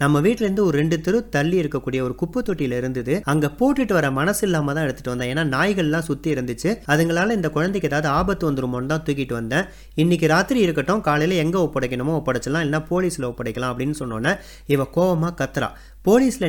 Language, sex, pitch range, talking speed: Tamil, male, 130-175 Hz, 160 wpm